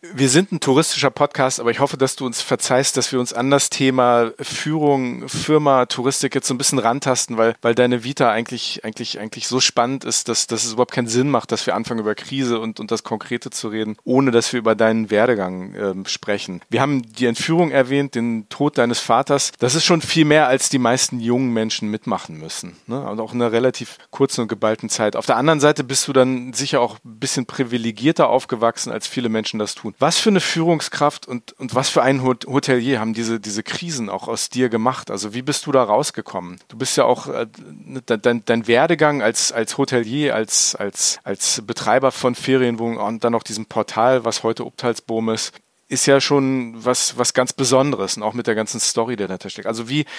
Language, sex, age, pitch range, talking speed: German, male, 40-59, 115-135 Hz, 215 wpm